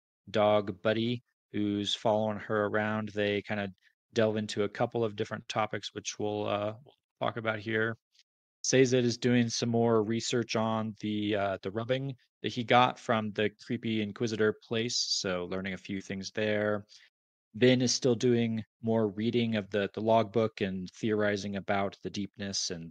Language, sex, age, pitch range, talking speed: English, male, 20-39, 105-125 Hz, 170 wpm